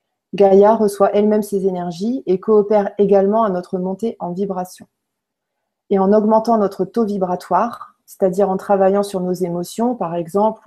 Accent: French